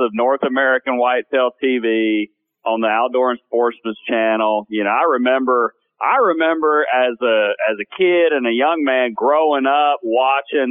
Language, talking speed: English, 160 wpm